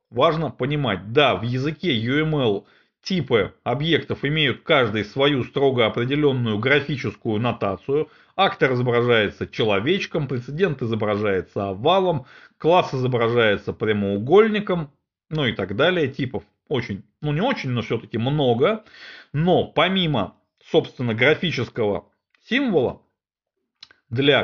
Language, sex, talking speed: Russian, male, 105 wpm